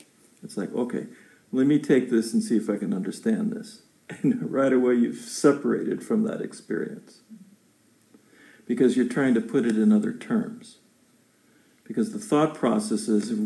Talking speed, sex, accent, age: 155 wpm, male, American, 50-69